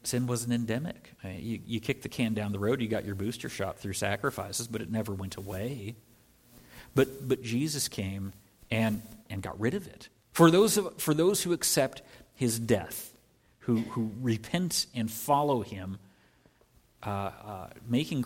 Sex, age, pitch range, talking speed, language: male, 50-69, 110-135 Hz, 170 wpm, English